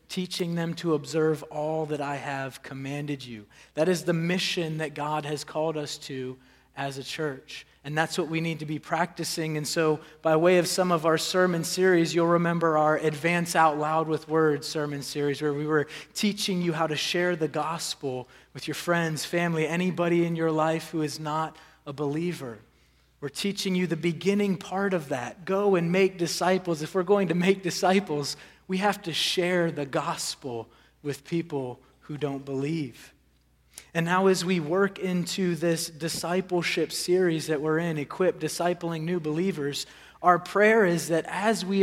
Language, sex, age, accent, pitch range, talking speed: English, male, 30-49, American, 150-180 Hz, 180 wpm